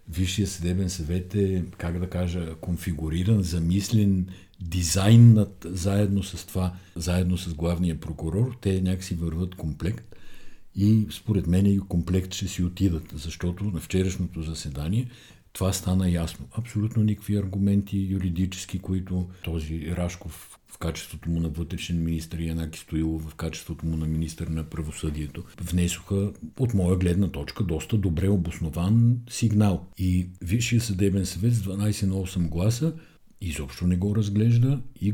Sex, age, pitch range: male, 60-79, 85-105 Hz